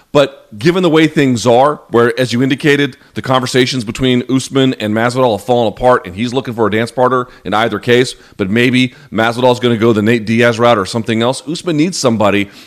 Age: 40-59